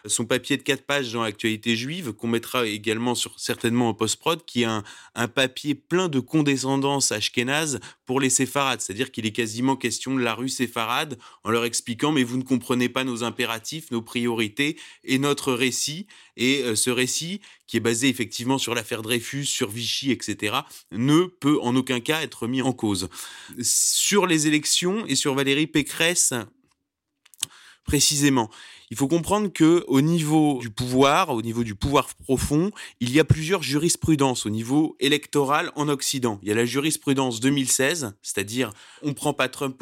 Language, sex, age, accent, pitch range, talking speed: French, male, 30-49, French, 120-150 Hz, 180 wpm